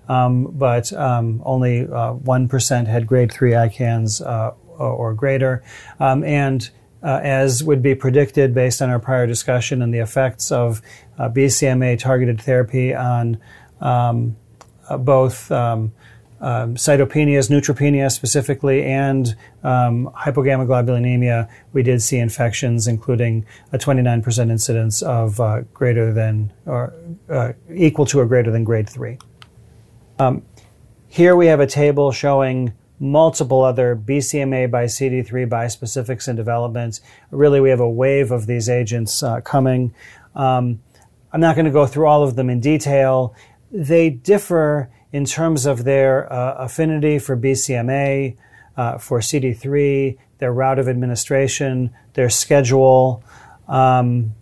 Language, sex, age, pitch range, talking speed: English, male, 40-59, 120-135 Hz, 135 wpm